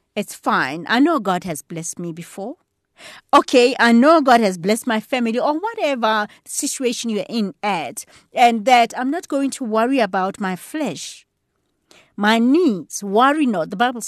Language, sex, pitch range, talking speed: English, female, 165-235 Hz, 165 wpm